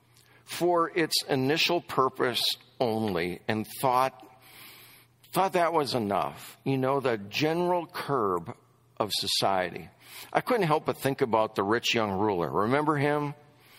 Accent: American